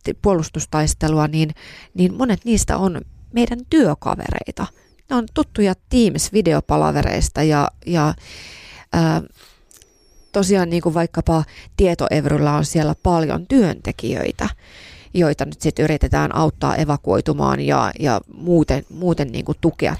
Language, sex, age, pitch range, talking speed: Finnish, female, 30-49, 145-185 Hz, 110 wpm